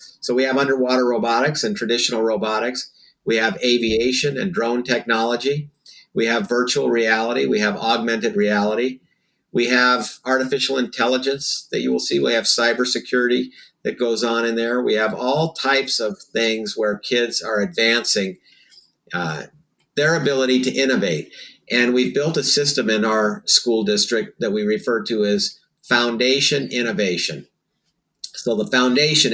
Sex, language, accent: male, English, American